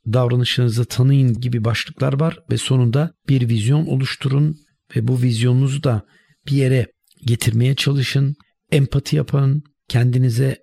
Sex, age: male, 60-79